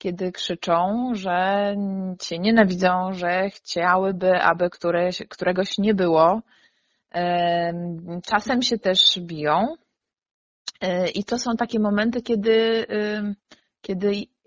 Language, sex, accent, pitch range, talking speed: Polish, female, native, 185-225 Hz, 95 wpm